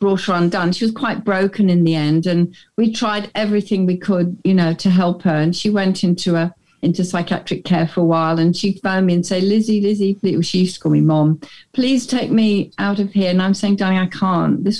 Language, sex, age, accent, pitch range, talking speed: English, female, 50-69, British, 170-200 Hz, 245 wpm